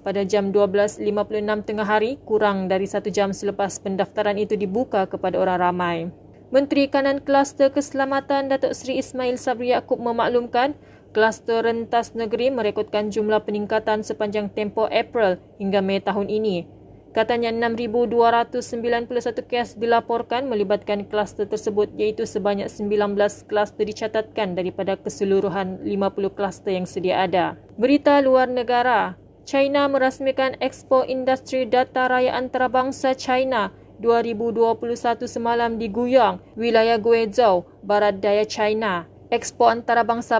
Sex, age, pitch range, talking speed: female, 20-39, 210-240 Hz, 120 wpm